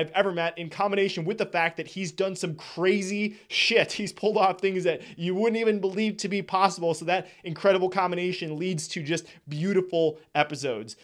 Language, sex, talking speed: English, male, 190 wpm